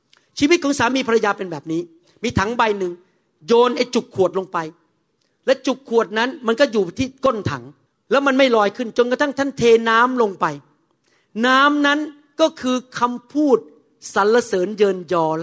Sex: male